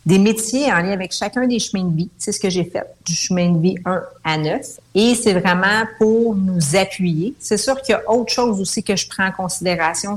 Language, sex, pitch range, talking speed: French, female, 170-220 Hz, 240 wpm